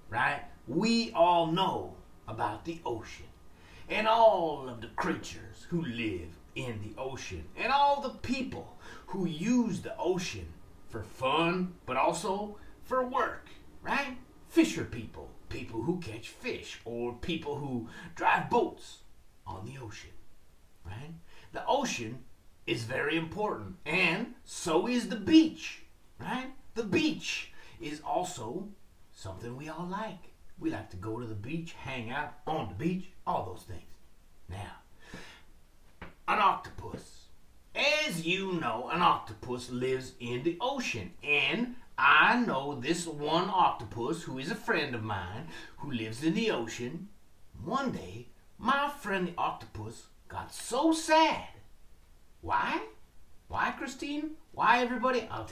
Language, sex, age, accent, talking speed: English, male, 30-49, American, 135 wpm